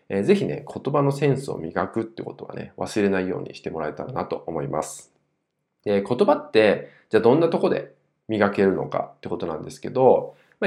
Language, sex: Japanese, male